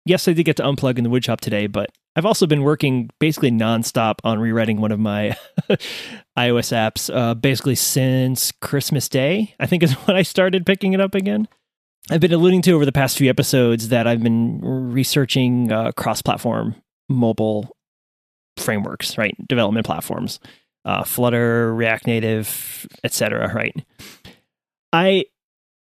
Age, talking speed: 30-49, 155 wpm